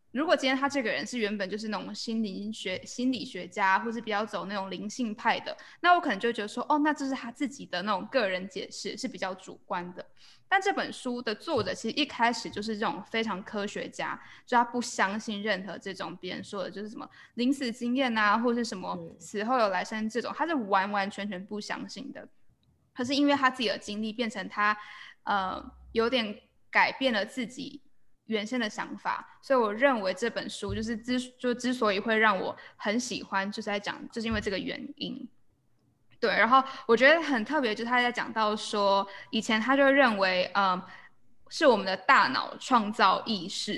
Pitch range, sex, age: 205-260 Hz, female, 10-29